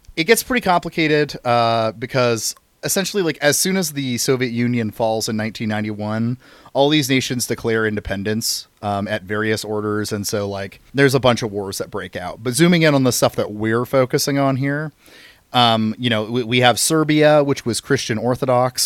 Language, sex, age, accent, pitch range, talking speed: English, male, 30-49, American, 110-130 Hz, 190 wpm